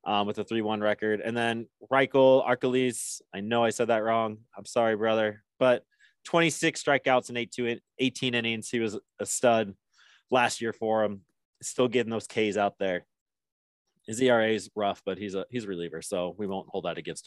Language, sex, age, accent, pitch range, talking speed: English, male, 20-39, American, 105-130 Hz, 195 wpm